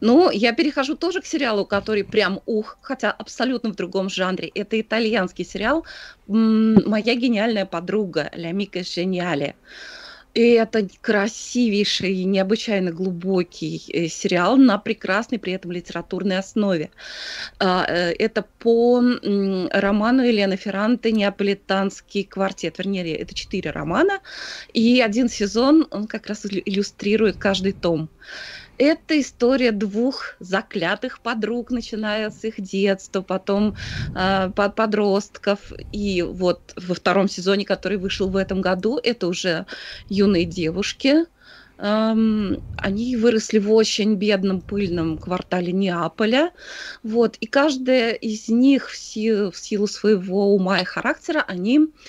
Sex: female